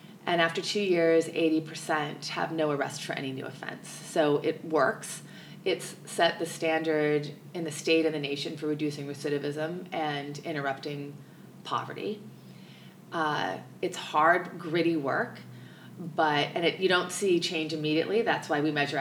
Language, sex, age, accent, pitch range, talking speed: English, female, 30-49, American, 150-180 Hz, 150 wpm